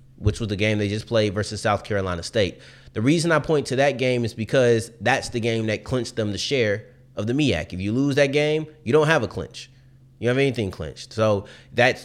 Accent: American